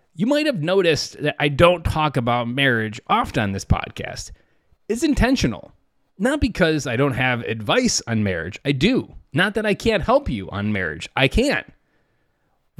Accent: American